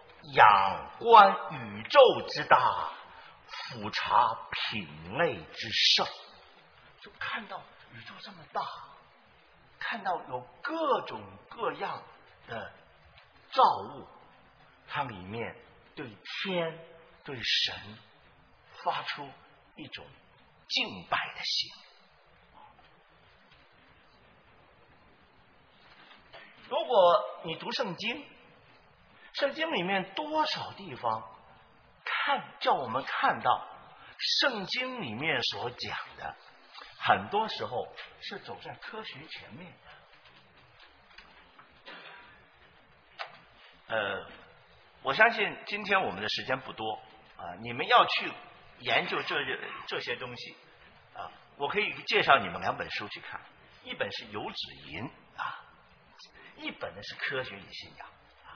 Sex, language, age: male, English, 50-69